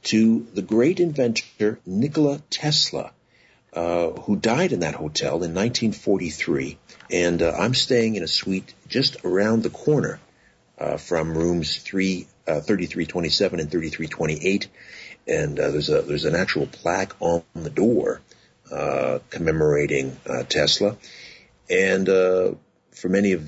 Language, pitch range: English, 80-110 Hz